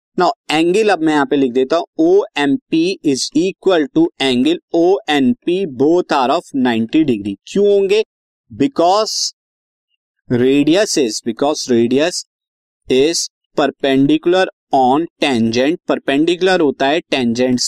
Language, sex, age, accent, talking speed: Hindi, male, 20-39, native, 120 wpm